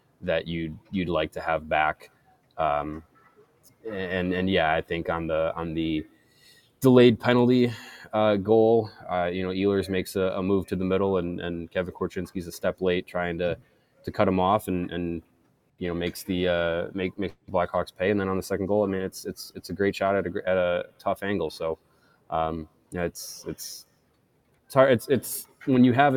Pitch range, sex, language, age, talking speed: 85-100 Hz, male, English, 20-39, 200 wpm